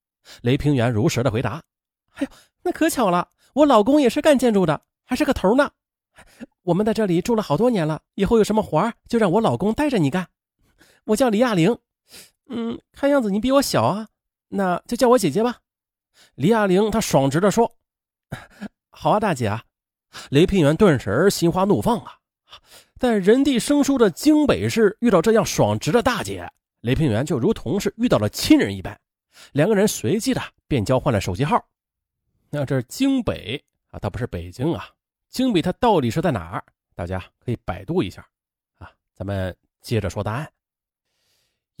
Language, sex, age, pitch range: Chinese, male, 30-49, 140-235 Hz